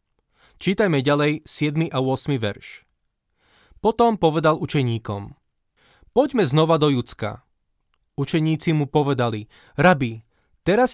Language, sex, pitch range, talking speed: Slovak, male, 135-175 Hz, 100 wpm